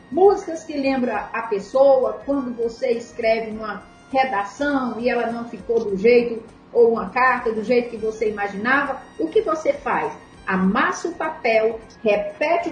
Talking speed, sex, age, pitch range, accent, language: 150 wpm, female, 40-59, 230-290 Hz, Brazilian, Portuguese